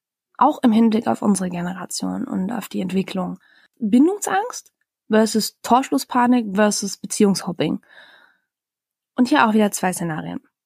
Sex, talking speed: female, 120 wpm